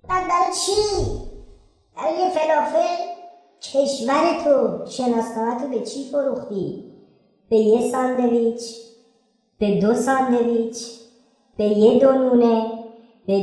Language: Persian